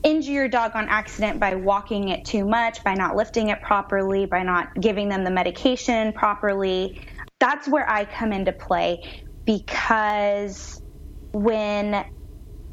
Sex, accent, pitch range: female, American, 195-235 Hz